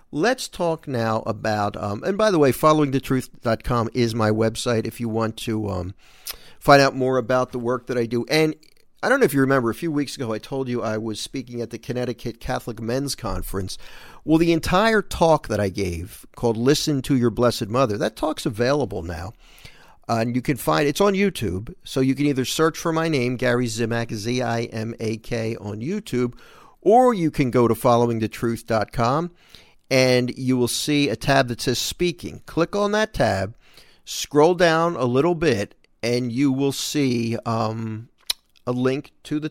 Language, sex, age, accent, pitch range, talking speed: English, male, 50-69, American, 110-140 Hz, 185 wpm